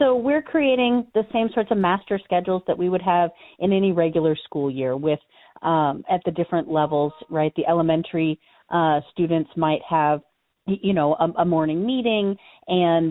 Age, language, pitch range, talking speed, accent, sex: 40-59, English, 160-200 Hz, 175 wpm, American, female